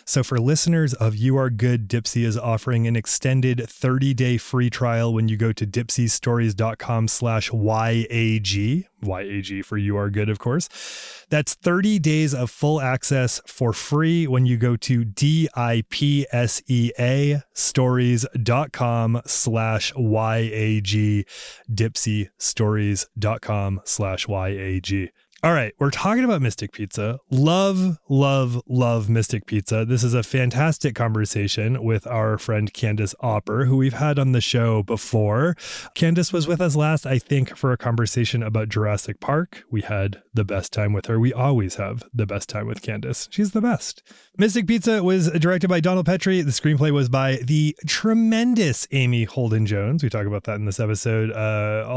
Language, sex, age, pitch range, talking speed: English, male, 20-39, 110-140 Hz, 150 wpm